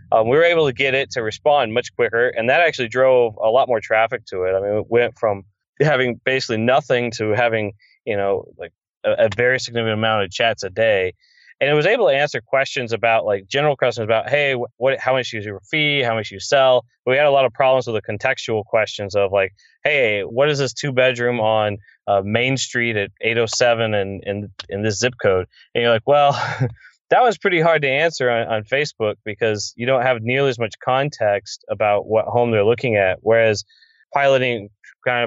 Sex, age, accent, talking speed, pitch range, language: male, 20-39, American, 215 wpm, 110-130 Hz, English